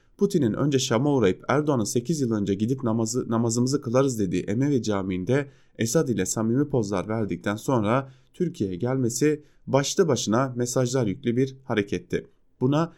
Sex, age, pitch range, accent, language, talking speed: male, 30-49, 105-135 Hz, Turkish, German, 140 wpm